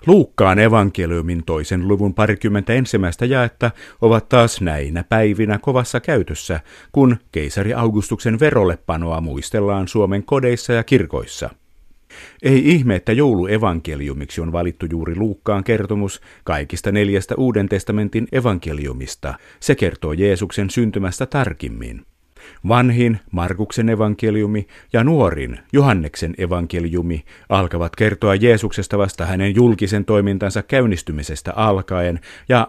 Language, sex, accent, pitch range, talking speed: Finnish, male, native, 85-115 Hz, 105 wpm